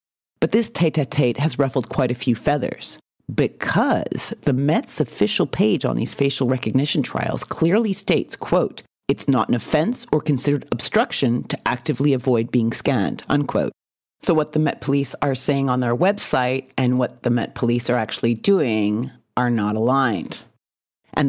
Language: English